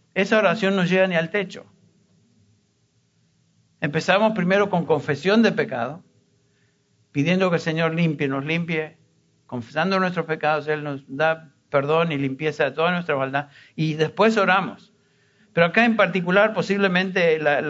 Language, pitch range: Spanish, 150-185 Hz